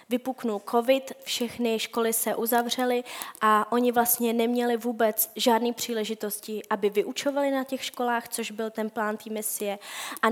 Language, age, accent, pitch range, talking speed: Czech, 20-39, native, 220-255 Hz, 145 wpm